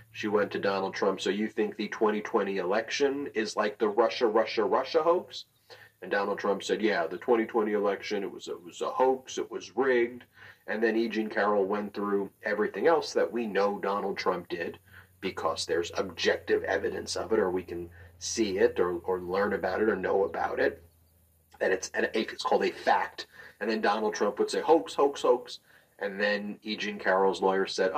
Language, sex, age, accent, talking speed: English, male, 40-59, American, 195 wpm